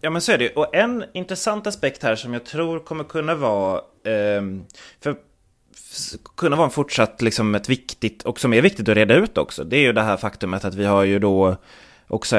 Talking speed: 220 wpm